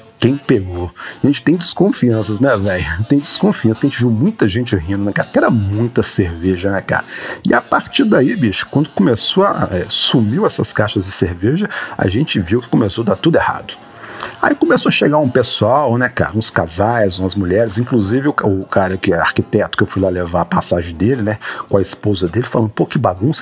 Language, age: Portuguese, 50-69